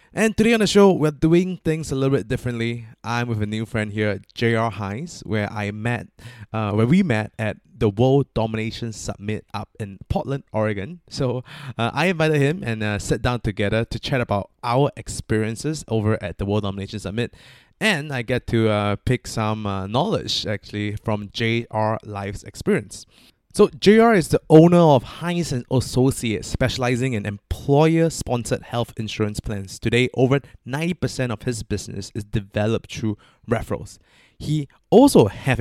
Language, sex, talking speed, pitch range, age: English, male, 170 wpm, 105-135 Hz, 20-39